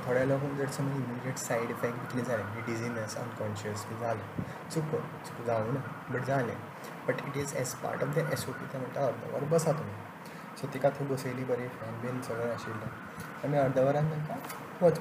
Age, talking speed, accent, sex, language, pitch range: 20-39, 185 wpm, native, male, Marathi, 125-150 Hz